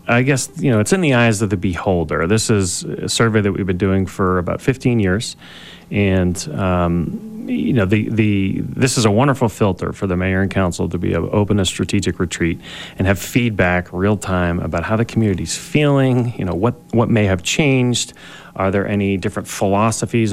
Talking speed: 200 wpm